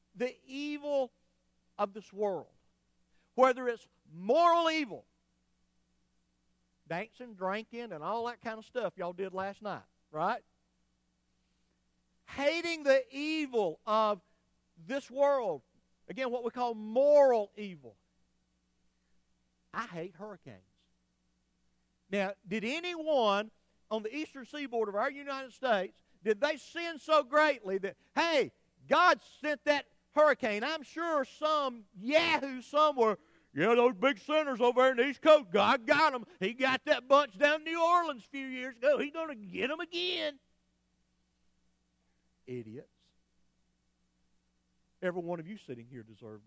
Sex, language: male, English